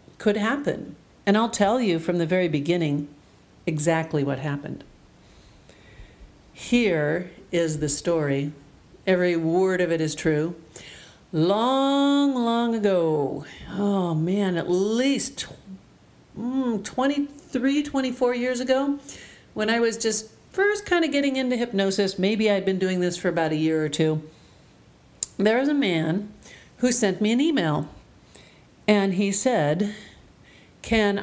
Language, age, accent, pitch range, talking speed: English, 50-69, American, 165-225 Hz, 135 wpm